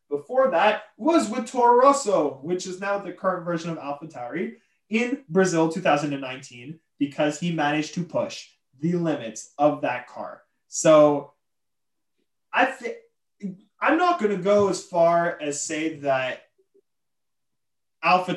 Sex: male